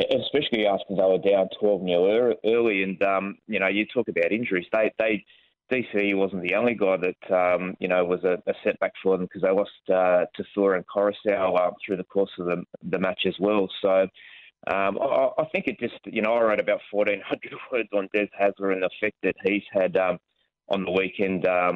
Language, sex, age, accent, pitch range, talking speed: English, male, 20-39, Australian, 95-105 Hz, 210 wpm